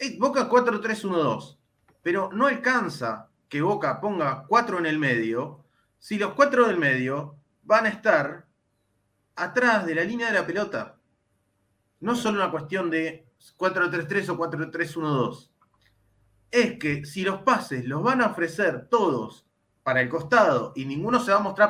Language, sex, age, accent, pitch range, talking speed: Spanish, male, 20-39, Argentinian, 140-210 Hz, 150 wpm